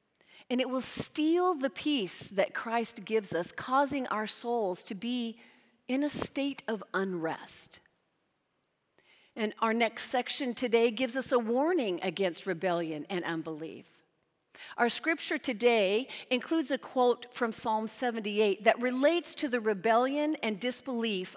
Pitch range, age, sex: 210-265 Hz, 40-59, female